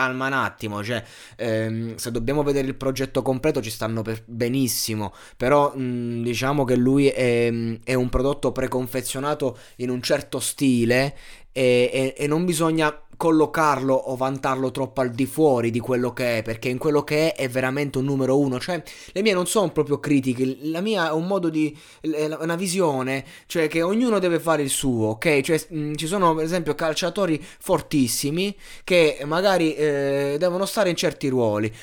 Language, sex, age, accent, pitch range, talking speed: Italian, male, 20-39, native, 130-170 Hz, 175 wpm